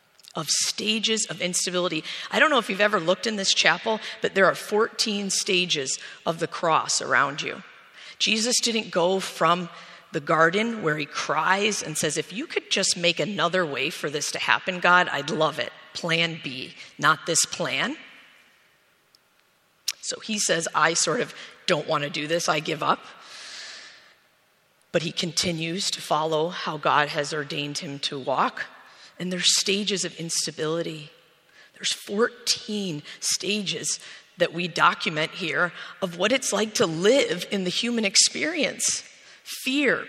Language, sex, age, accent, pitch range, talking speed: English, female, 40-59, American, 165-220 Hz, 155 wpm